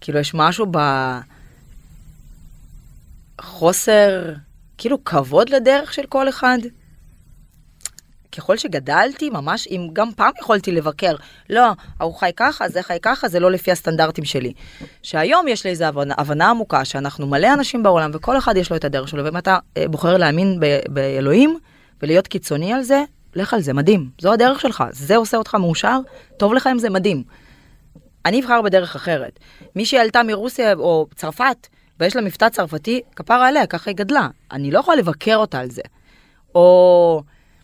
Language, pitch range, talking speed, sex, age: Hebrew, 150-230 Hz, 160 wpm, female, 20-39